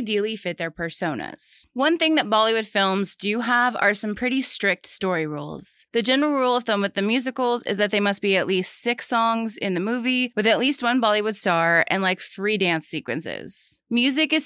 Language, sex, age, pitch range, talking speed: English, female, 20-39, 190-245 Hz, 210 wpm